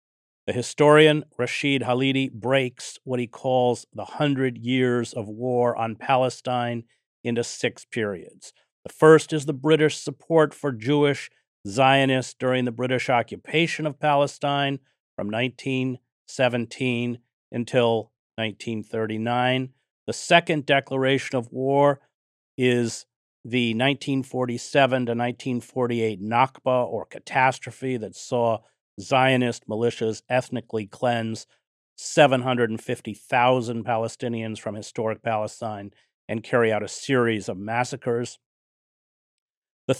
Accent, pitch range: American, 115-130 Hz